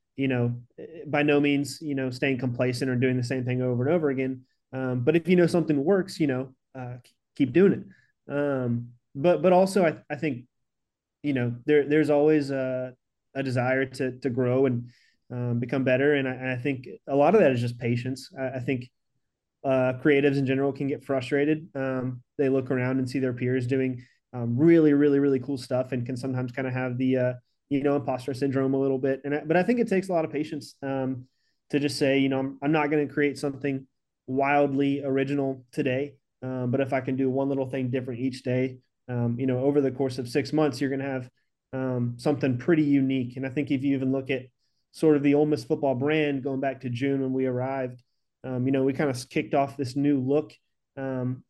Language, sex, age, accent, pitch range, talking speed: English, male, 30-49, American, 130-145 Hz, 225 wpm